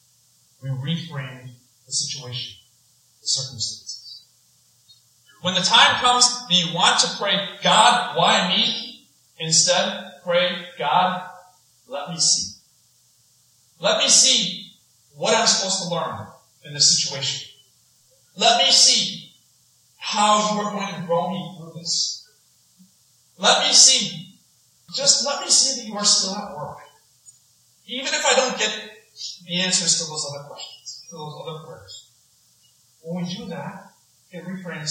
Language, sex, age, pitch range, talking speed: English, male, 40-59, 130-190 Hz, 140 wpm